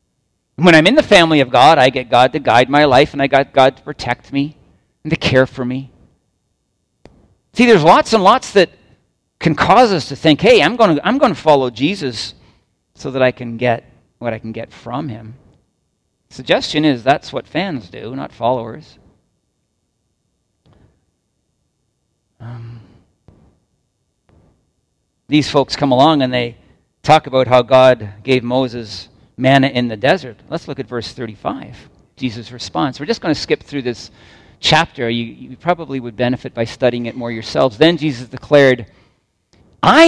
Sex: male